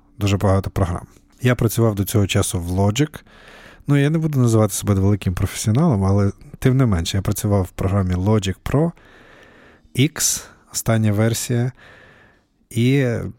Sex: male